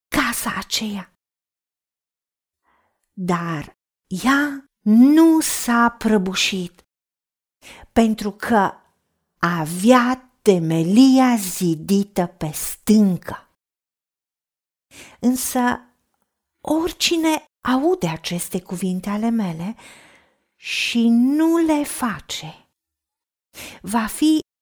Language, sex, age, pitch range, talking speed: Romanian, female, 50-69, 190-275 Hz, 65 wpm